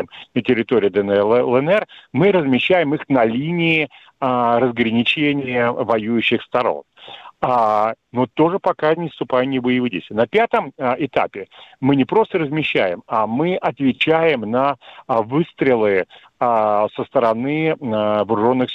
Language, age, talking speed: Russian, 40-59, 125 wpm